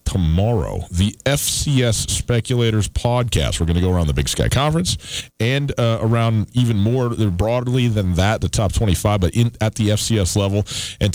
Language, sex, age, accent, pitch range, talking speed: English, male, 40-59, American, 95-130 Hz, 170 wpm